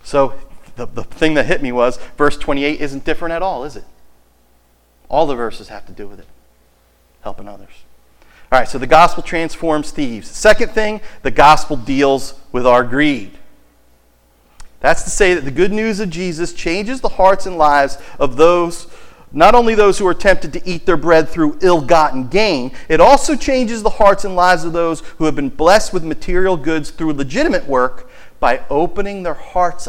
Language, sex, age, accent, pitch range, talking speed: English, male, 40-59, American, 120-175 Hz, 185 wpm